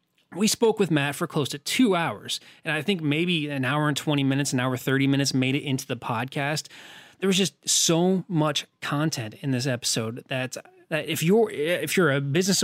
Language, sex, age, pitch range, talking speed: English, male, 30-49, 130-155 Hz, 210 wpm